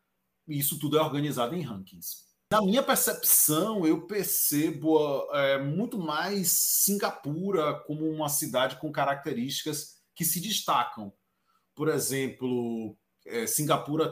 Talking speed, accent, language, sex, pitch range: 115 wpm, Brazilian, Portuguese, male, 140-185 Hz